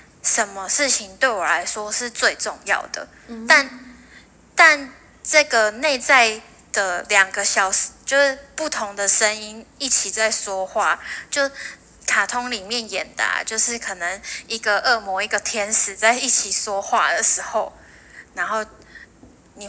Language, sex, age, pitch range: Chinese, female, 10-29, 205-255 Hz